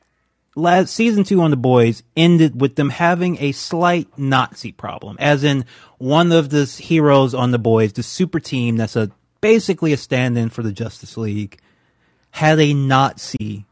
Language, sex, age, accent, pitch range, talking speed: English, male, 30-49, American, 115-155 Hz, 170 wpm